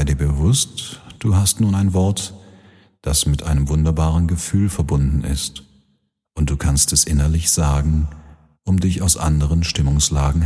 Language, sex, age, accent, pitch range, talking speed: German, male, 40-59, German, 70-90 Hz, 150 wpm